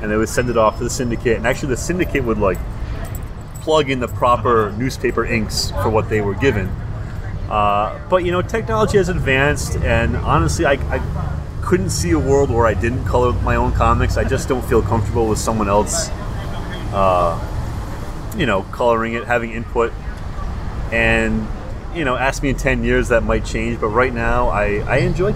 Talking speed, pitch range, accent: 190 wpm, 100-120 Hz, American